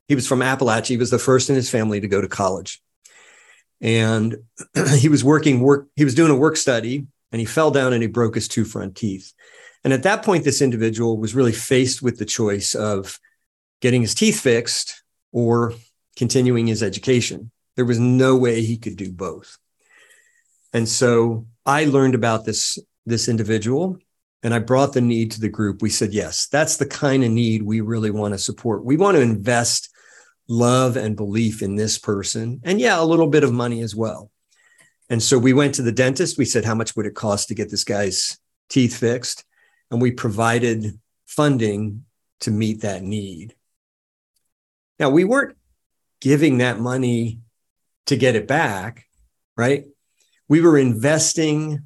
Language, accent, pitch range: English, American, 110-135 Hz